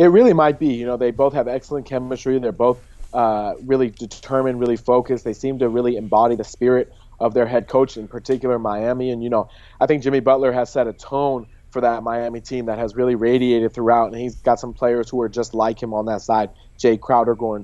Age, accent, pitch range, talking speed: 30-49, American, 115-130 Hz, 235 wpm